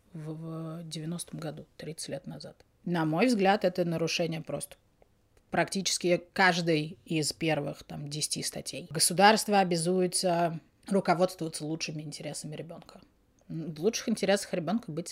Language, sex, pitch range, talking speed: Russian, female, 160-195 Hz, 120 wpm